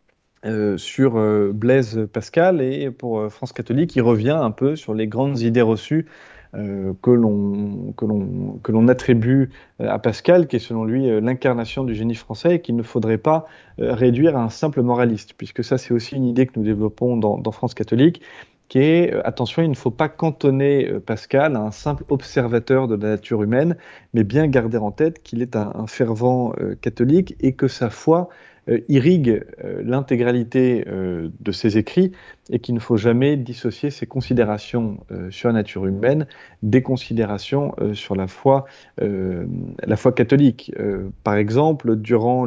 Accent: French